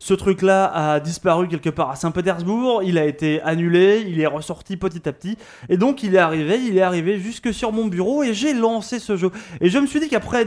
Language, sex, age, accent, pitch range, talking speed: French, male, 20-39, French, 170-230 Hz, 235 wpm